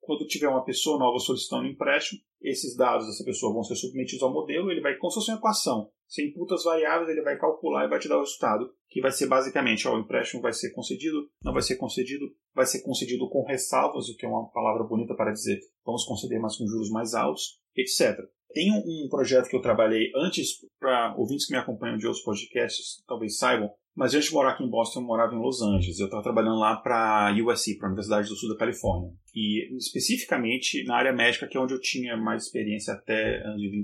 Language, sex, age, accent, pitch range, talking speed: Portuguese, male, 30-49, Brazilian, 110-145 Hz, 225 wpm